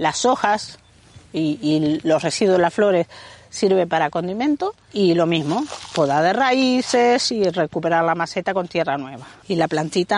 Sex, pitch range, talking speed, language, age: female, 155-215 Hz, 165 wpm, Spanish, 40-59